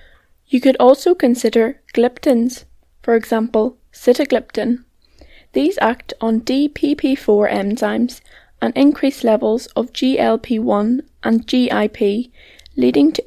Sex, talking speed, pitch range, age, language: female, 100 wpm, 230-270 Hz, 10-29, English